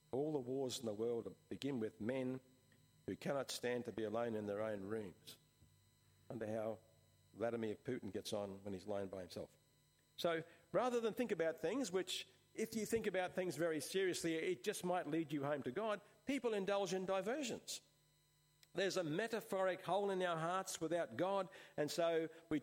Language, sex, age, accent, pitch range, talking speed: English, male, 50-69, Australian, 130-190 Hz, 180 wpm